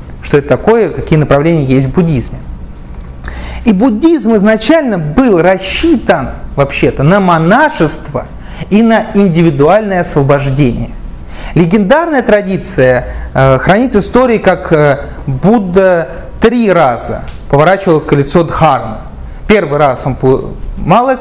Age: 30-49